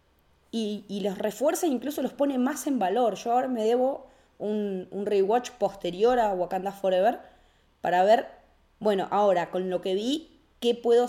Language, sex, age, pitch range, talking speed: Spanish, female, 20-39, 180-230 Hz, 175 wpm